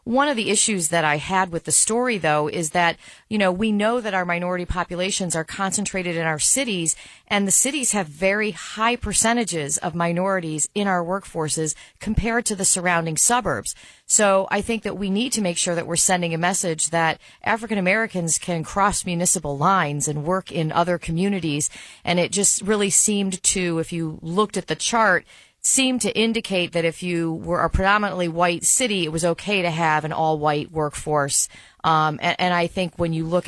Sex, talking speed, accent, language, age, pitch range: female, 195 wpm, American, English, 40-59, 160-195 Hz